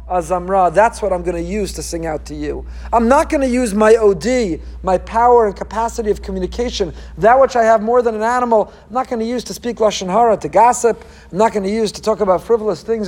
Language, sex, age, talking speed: English, male, 50-69, 250 wpm